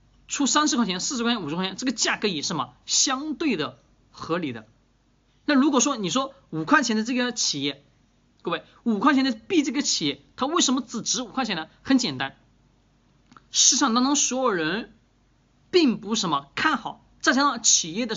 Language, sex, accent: Chinese, male, native